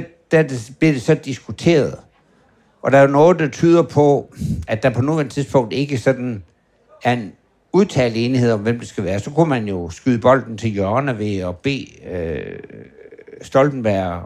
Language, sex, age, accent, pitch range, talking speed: Danish, male, 60-79, native, 110-145 Hz, 175 wpm